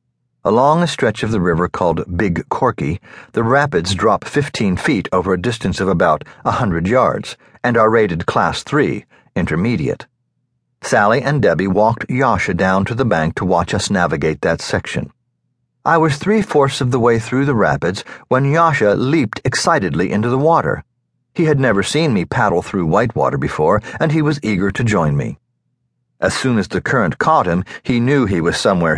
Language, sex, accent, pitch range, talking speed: English, male, American, 100-140 Hz, 180 wpm